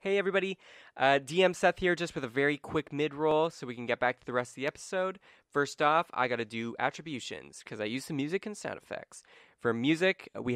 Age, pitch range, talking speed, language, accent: 20-39, 115-155 Hz, 235 wpm, English, American